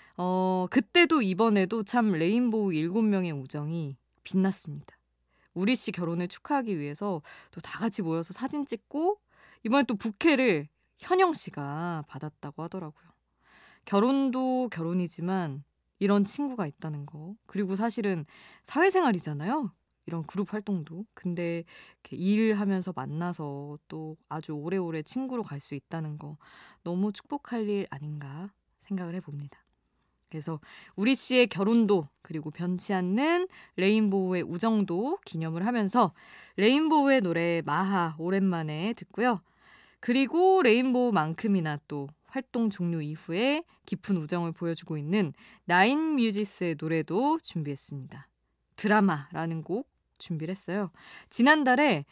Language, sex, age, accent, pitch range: Korean, female, 20-39, native, 160-225 Hz